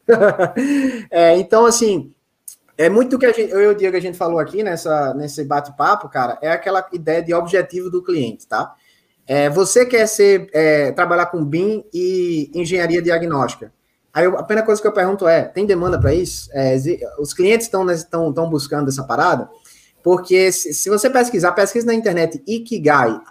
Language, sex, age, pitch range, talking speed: Portuguese, male, 20-39, 160-215 Hz, 180 wpm